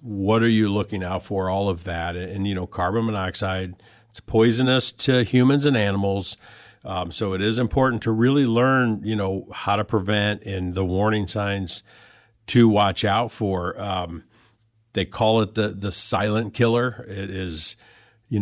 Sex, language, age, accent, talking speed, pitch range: male, English, 50-69, American, 170 wpm, 95-115 Hz